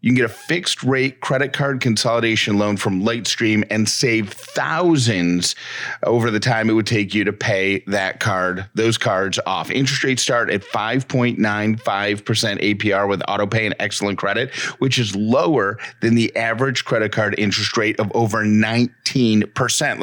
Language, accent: English, American